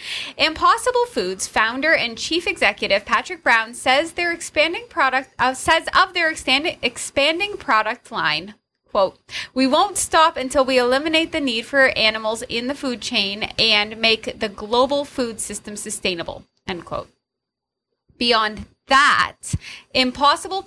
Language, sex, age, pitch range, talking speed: English, female, 20-39, 225-305 Hz, 135 wpm